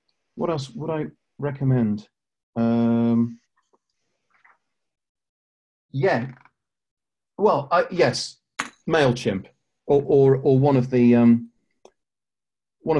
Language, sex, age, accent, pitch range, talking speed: English, male, 40-59, British, 105-125 Hz, 90 wpm